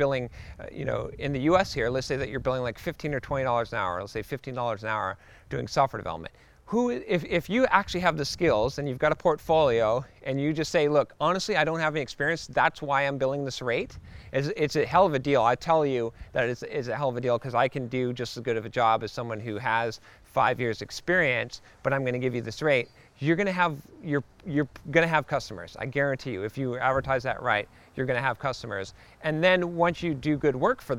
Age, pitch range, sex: 40-59, 125-155 Hz, male